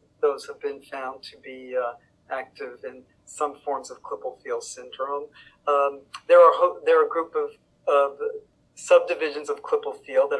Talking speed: 175 wpm